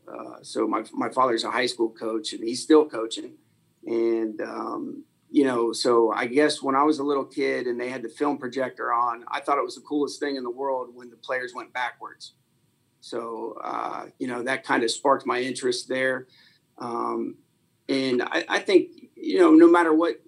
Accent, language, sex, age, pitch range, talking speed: American, English, male, 40-59, 125-160 Hz, 205 wpm